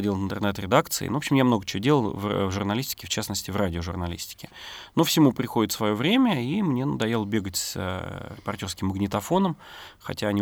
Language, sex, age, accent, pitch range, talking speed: Russian, male, 30-49, native, 100-120 Hz, 160 wpm